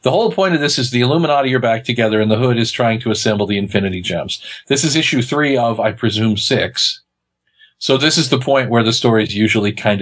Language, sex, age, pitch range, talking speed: English, male, 40-59, 110-135 Hz, 240 wpm